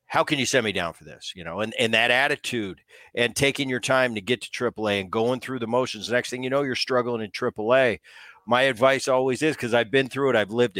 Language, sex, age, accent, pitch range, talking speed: English, male, 50-69, American, 115-145 Hz, 265 wpm